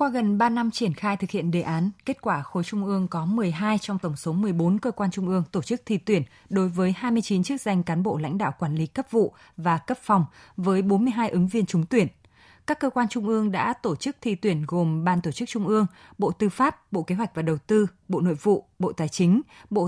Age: 20-39